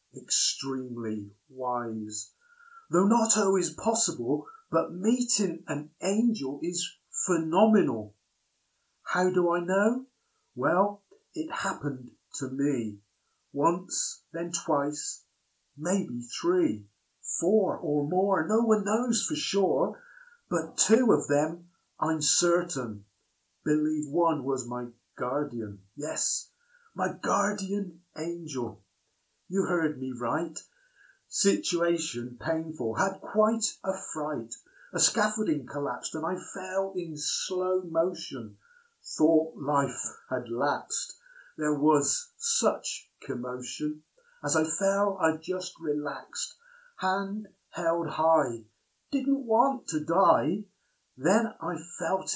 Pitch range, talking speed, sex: 145-215 Hz, 105 wpm, male